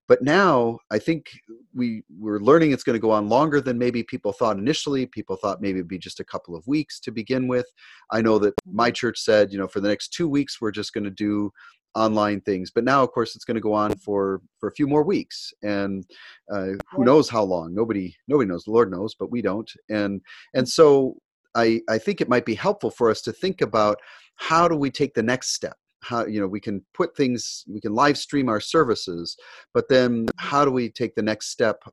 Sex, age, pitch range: male, 40-59, 105-135 Hz